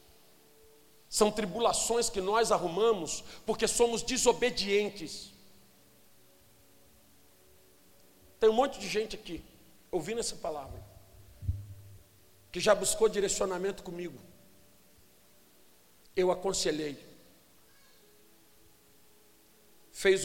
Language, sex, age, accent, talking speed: Portuguese, male, 50-69, Brazilian, 75 wpm